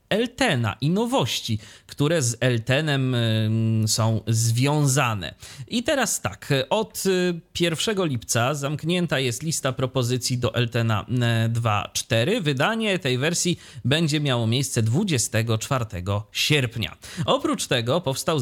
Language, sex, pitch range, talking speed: Polish, male, 115-140 Hz, 105 wpm